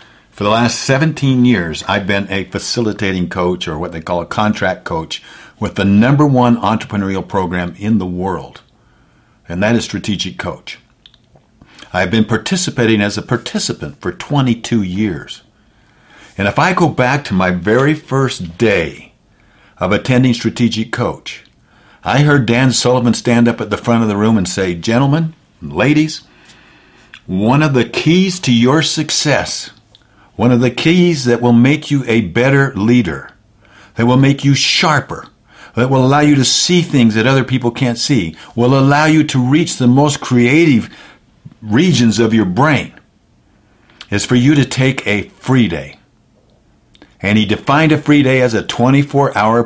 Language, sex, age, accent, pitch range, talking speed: English, male, 60-79, American, 105-135 Hz, 160 wpm